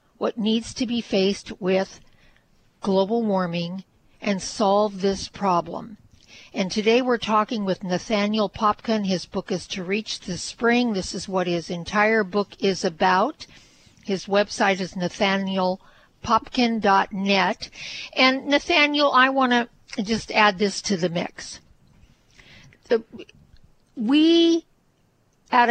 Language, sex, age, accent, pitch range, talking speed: English, female, 50-69, American, 185-230 Hz, 120 wpm